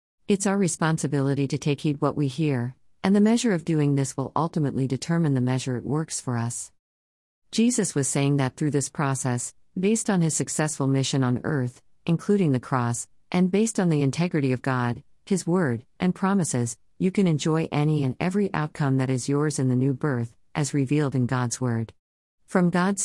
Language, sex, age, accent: English, female, 50-69, American